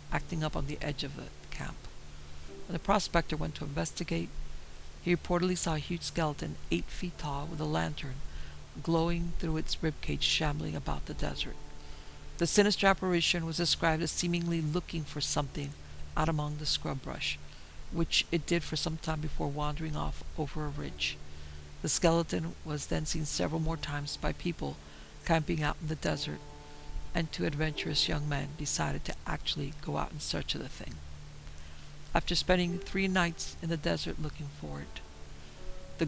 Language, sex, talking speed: English, female, 170 wpm